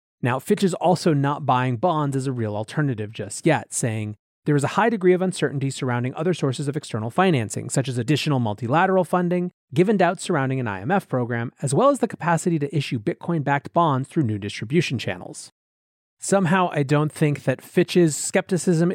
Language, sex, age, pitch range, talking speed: English, male, 30-49, 130-180 Hz, 185 wpm